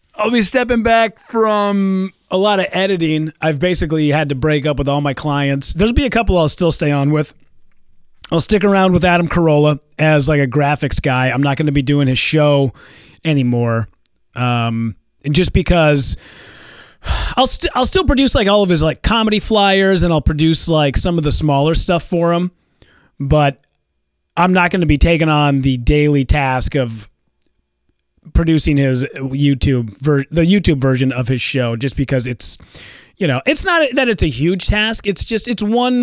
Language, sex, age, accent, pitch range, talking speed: English, male, 30-49, American, 140-195 Hz, 185 wpm